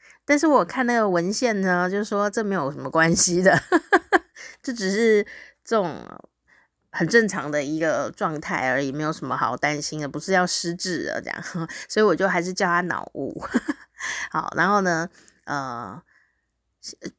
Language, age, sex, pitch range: Chinese, 30-49, female, 150-200 Hz